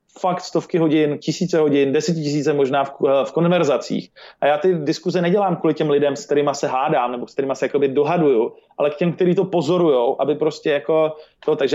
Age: 30-49